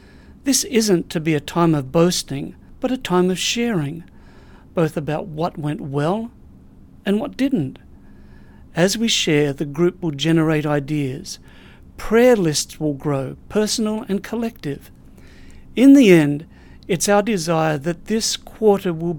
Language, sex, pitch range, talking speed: English, male, 150-195 Hz, 145 wpm